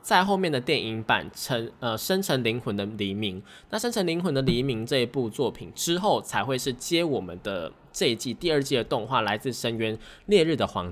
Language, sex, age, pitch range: Chinese, male, 20-39, 110-145 Hz